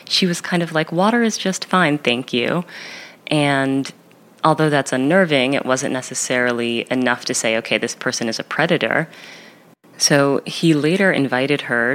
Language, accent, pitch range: English, American, 125-165 Hz